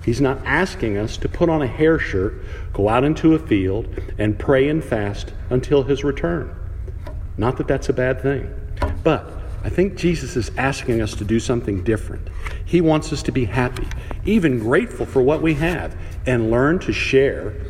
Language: English